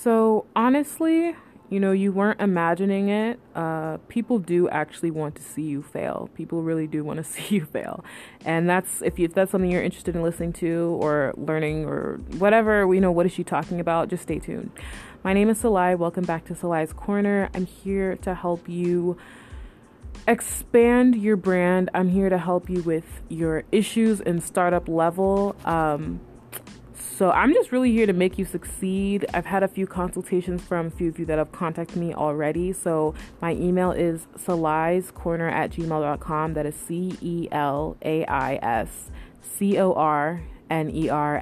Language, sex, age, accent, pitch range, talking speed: English, female, 20-39, American, 165-195 Hz, 165 wpm